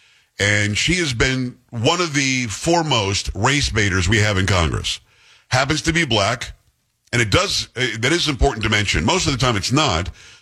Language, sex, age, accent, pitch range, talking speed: English, male, 50-69, American, 100-130 Hz, 190 wpm